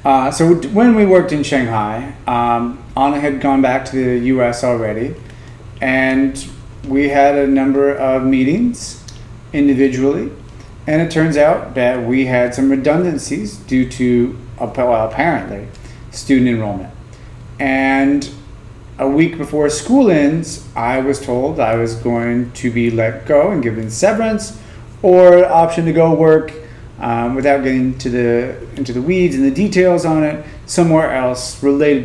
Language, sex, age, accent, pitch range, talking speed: English, male, 30-49, American, 120-150 Hz, 145 wpm